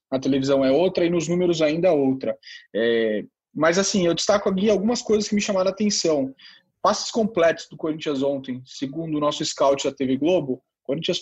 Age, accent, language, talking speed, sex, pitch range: 20-39, Brazilian, Portuguese, 195 wpm, male, 145-195 Hz